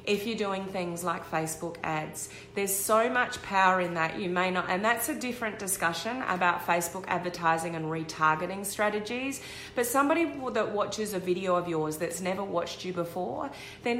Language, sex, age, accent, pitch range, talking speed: English, female, 30-49, Australian, 165-205 Hz, 175 wpm